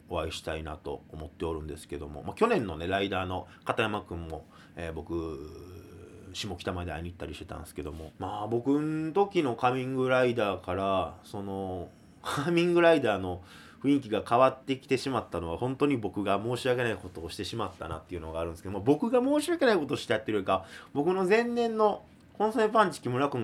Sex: male